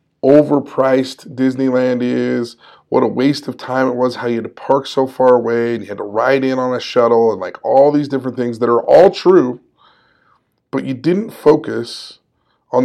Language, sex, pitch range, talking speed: English, male, 120-150 Hz, 195 wpm